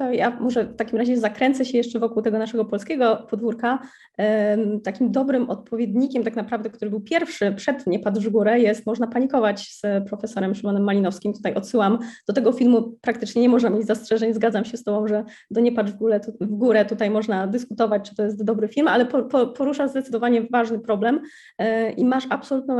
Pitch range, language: 215-245 Hz, English